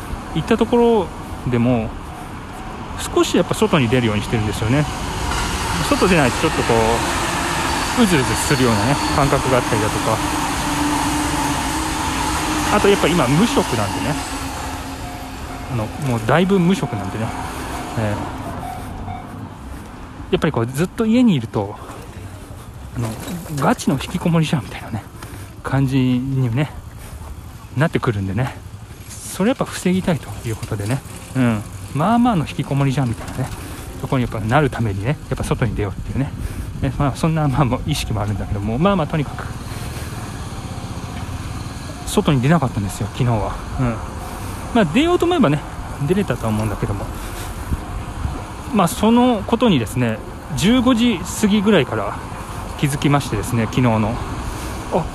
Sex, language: male, Japanese